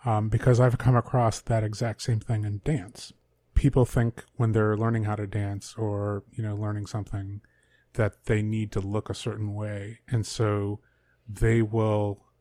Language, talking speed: English, 175 wpm